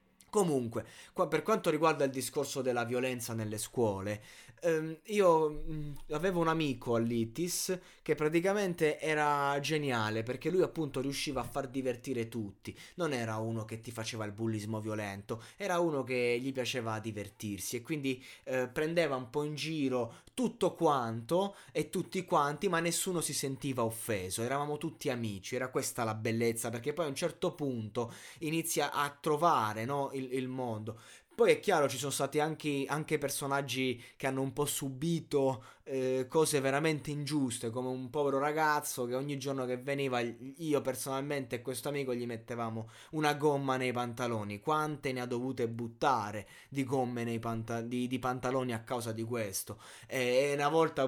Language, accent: Italian, native